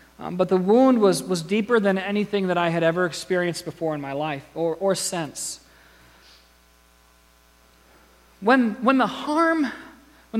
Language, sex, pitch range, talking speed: English, male, 140-220 Hz, 150 wpm